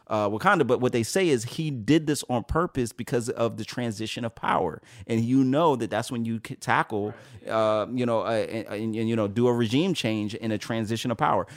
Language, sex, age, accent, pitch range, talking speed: English, male, 30-49, American, 105-130 Hz, 235 wpm